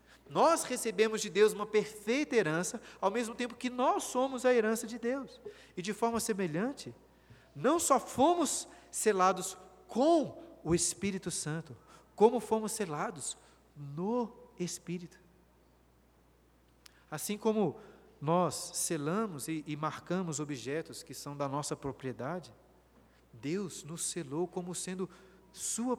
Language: Portuguese